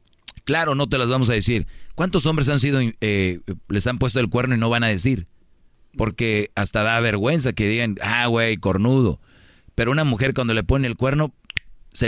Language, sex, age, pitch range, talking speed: Spanish, male, 40-59, 105-130 Hz, 200 wpm